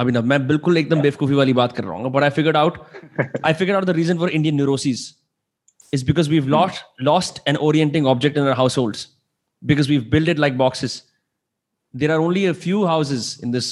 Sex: male